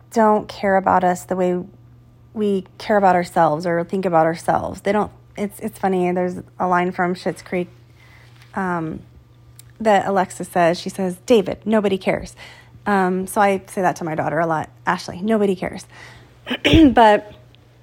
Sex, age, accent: female, 30-49, American